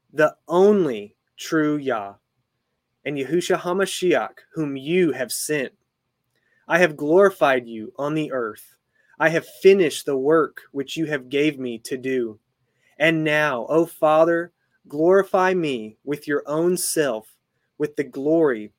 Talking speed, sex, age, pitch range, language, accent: 135 wpm, male, 30-49, 130-165 Hz, English, American